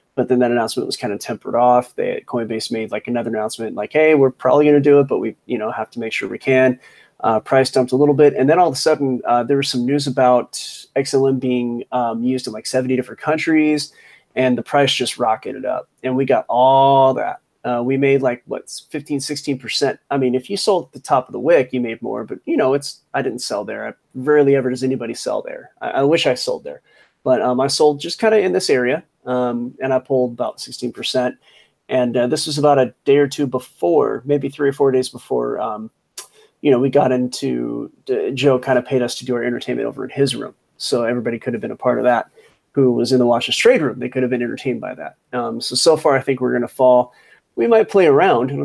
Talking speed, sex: 250 wpm, male